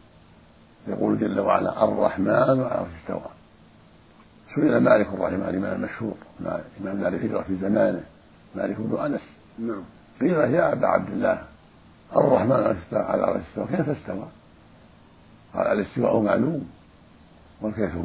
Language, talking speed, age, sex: Arabic, 115 wpm, 50-69, male